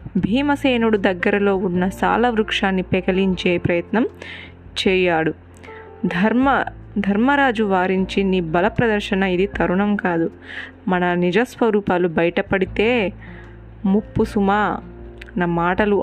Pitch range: 175-215 Hz